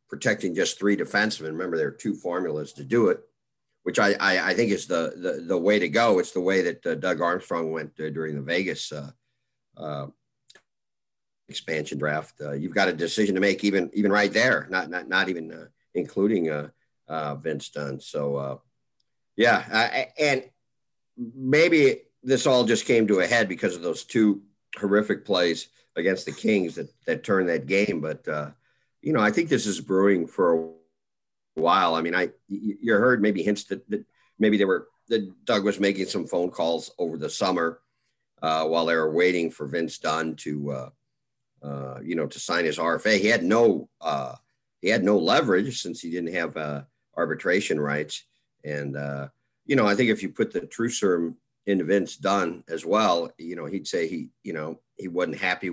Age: 50-69